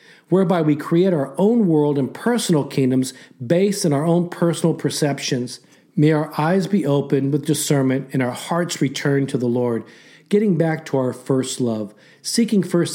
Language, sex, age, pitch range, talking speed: English, male, 40-59, 140-180 Hz, 170 wpm